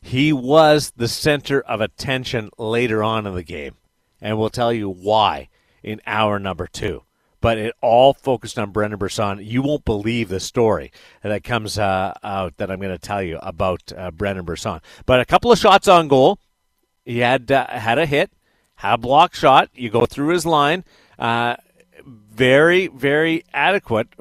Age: 40-59